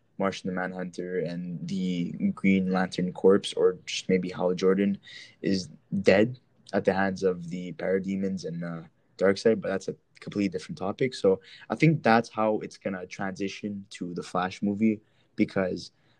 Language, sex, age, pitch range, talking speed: English, male, 20-39, 95-110 Hz, 155 wpm